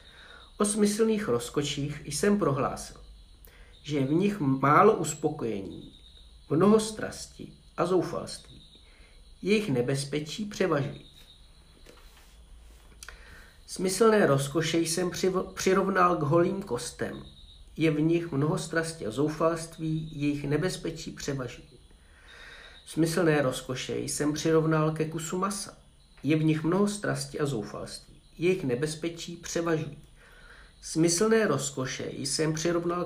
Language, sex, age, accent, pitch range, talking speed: Czech, male, 50-69, native, 140-175 Hz, 100 wpm